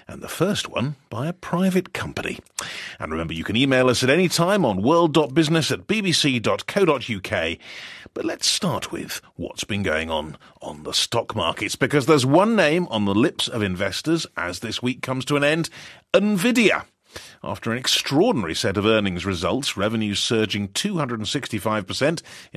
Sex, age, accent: male, 40-59, British